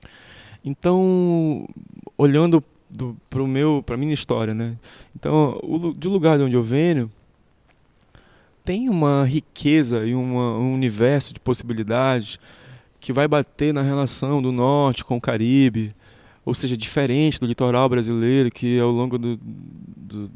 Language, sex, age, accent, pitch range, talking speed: Portuguese, male, 20-39, Brazilian, 120-140 Hz, 135 wpm